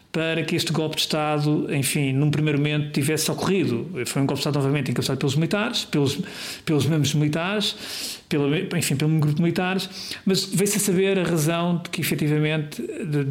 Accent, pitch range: Portuguese, 145-185 Hz